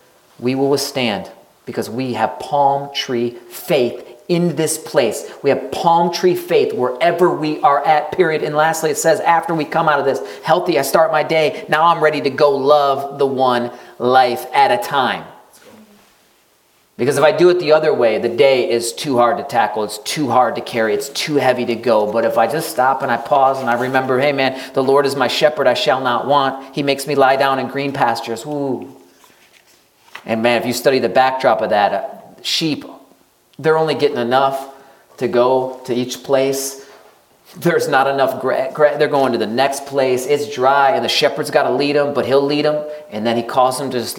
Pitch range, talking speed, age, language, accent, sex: 130-155 Hz, 210 wpm, 40-59, English, American, male